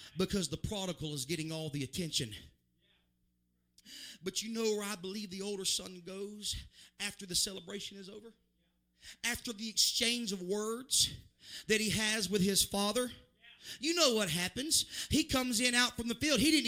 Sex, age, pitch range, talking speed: male, 30-49, 205-310 Hz, 170 wpm